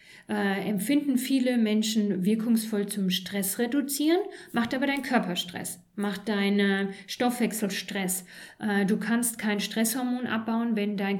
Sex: female